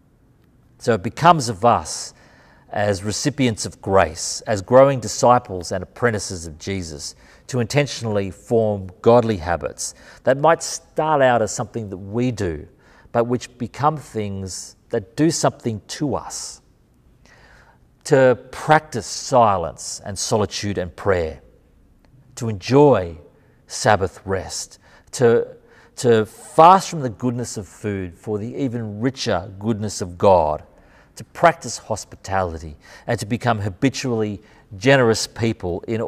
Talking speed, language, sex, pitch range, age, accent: 125 wpm, English, male, 95-120 Hz, 40-59, Australian